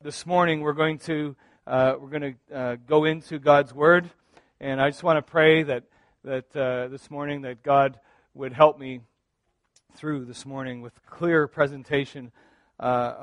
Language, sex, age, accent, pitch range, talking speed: English, male, 40-59, American, 130-155 Hz, 170 wpm